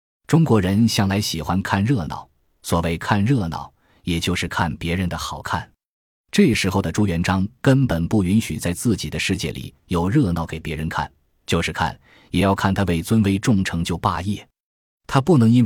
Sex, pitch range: male, 85-115 Hz